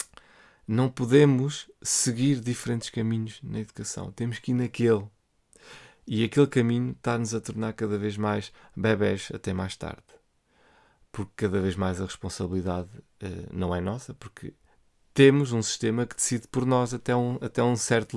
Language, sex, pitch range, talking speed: Portuguese, male, 105-135 Hz, 155 wpm